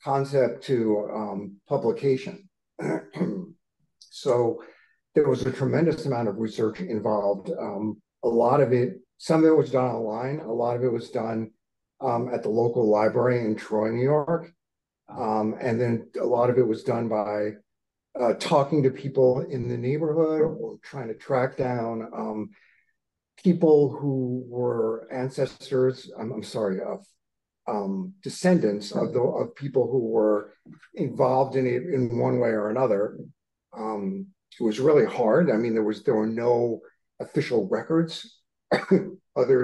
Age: 50-69